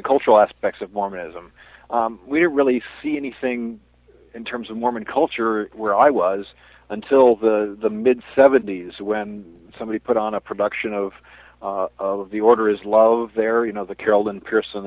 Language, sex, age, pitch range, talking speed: English, male, 50-69, 100-115 Hz, 170 wpm